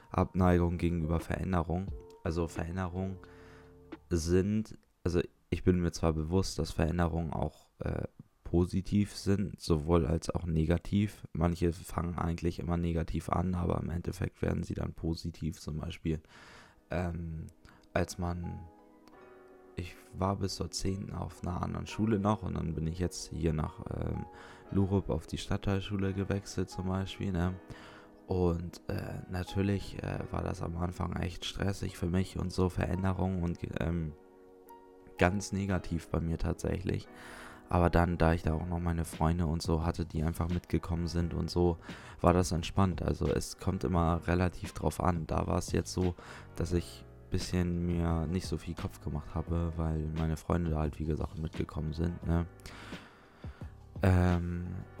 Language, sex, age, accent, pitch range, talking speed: German, male, 20-39, German, 85-95 Hz, 155 wpm